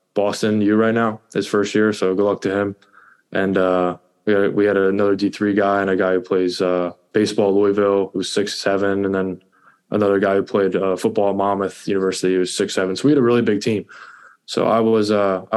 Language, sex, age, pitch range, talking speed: English, male, 20-39, 95-105 Hz, 230 wpm